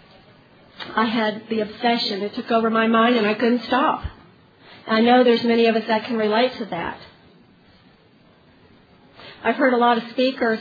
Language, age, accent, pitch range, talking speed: English, 40-59, American, 220-250 Hz, 170 wpm